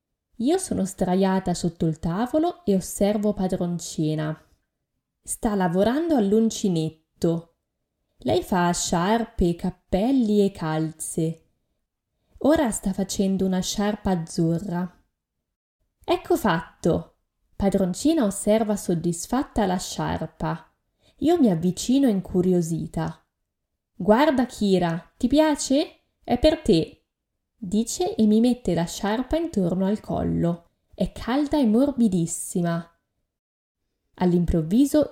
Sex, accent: female, native